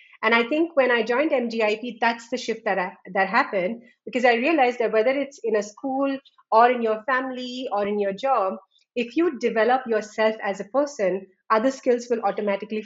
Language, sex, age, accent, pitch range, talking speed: English, female, 30-49, Indian, 200-255 Hz, 190 wpm